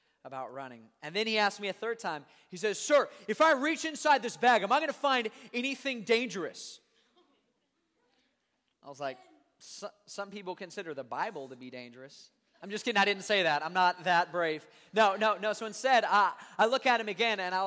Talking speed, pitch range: 205 wpm, 155-205 Hz